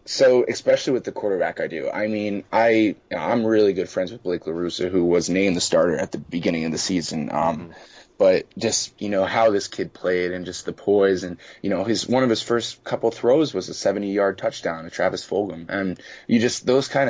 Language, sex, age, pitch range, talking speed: English, male, 20-39, 90-110 Hz, 230 wpm